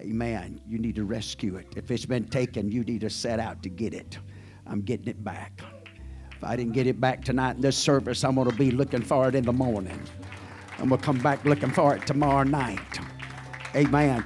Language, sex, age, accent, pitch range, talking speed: English, male, 50-69, American, 110-130 Hz, 215 wpm